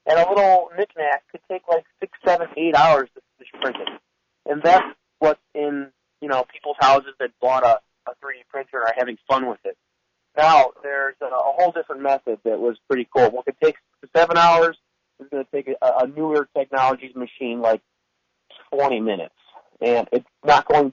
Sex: male